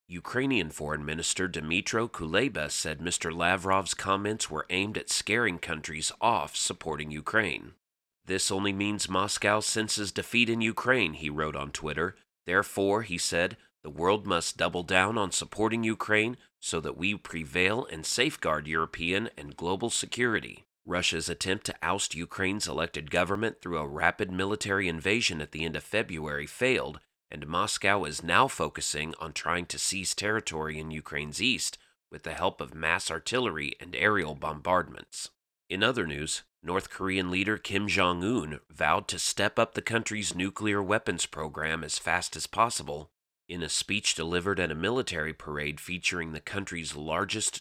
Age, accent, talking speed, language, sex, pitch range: 30-49, American, 155 wpm, English, male, 80-100 Hz